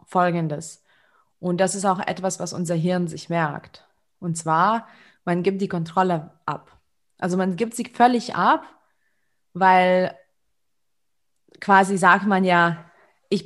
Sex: female